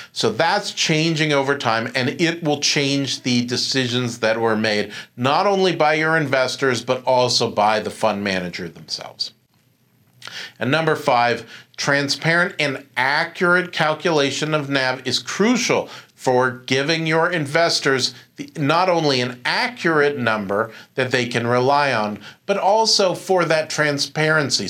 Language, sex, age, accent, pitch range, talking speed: English, male, 40-59, American, 130-165 Hz, 135 wpm